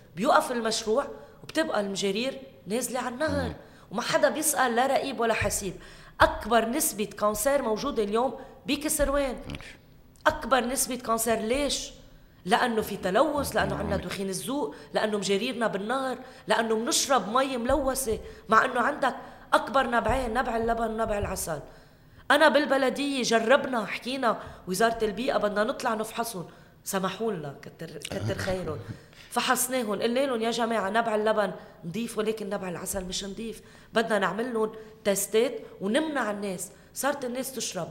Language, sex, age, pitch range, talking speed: Arabic, female, 20-39, 195-255 Hz, 130 wpm